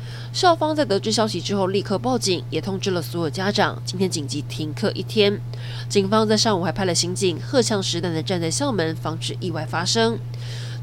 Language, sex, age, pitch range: Chinese, female, 20-39, 120-200 Hz